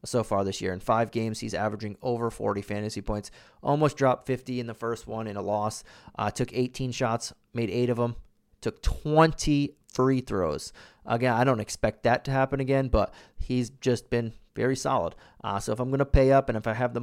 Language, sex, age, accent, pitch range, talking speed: English, male, 30-49, American, 110-130 Hz, 215 wpm